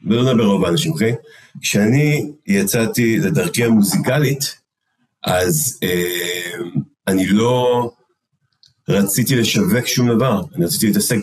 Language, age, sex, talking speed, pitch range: Hebrew, 40-59, male, 105 wpm, 110-155 Hz